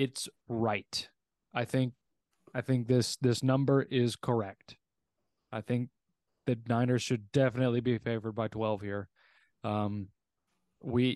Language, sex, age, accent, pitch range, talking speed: English, male, 20-39, American, 110-135 Hz, 130 wpm